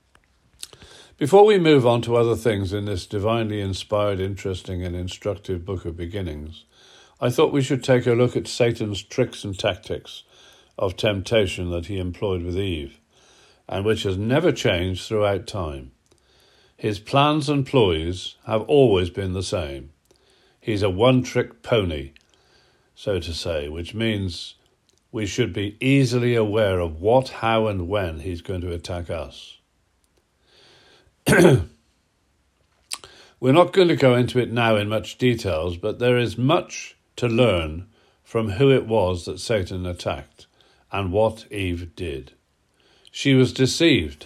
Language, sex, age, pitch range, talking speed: English, male, 50-69, 90-120 Hz, 145 wpm